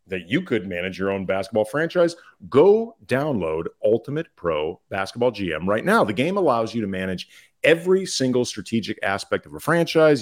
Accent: American